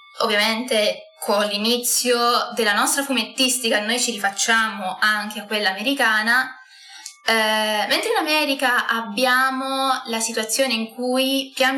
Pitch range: 215-270 Hz